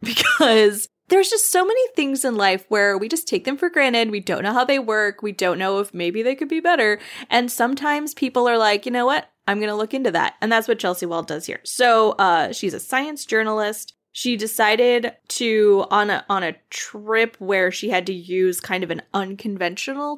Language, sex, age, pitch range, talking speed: English, female, 20-39, 190-270 Hz, 215 wpm